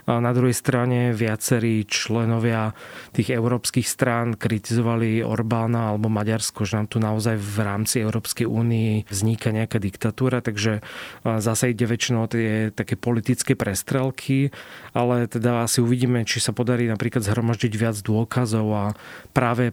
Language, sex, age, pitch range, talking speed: Slovak, male, 30-49, 110-120 Hz, 135 wpm